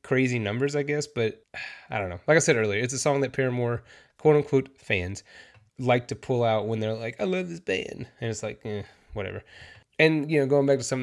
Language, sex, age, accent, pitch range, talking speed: English, male, 20-39, American, 110-135 Hz, 235 wpm